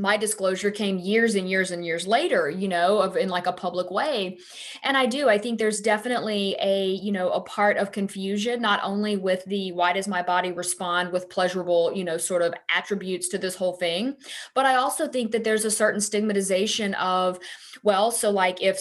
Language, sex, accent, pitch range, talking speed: English, female, American, 175-205 Hz, 205 wpm